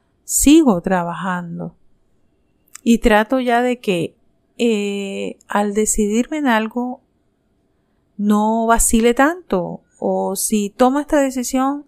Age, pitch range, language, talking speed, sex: 40-59, 200-250 Hz, Spanish, 100 wpm, female